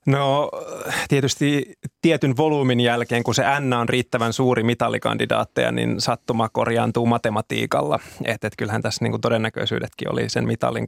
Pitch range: 115-135 Hz